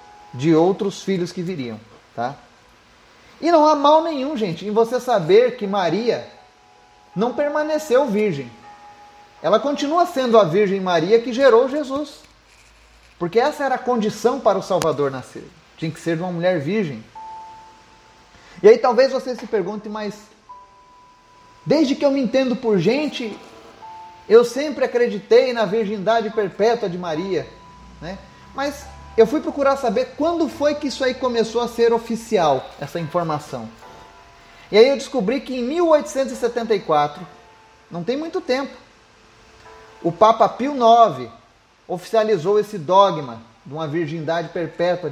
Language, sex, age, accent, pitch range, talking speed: Portuguese, male, 30-49, Brazilian, 175-270 Hz, 140 wpm